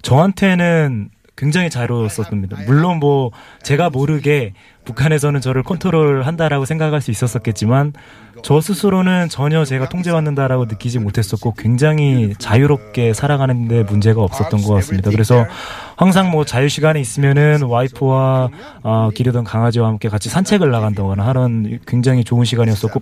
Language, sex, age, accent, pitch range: Korean, male, 20-39, native, 115-150 Hz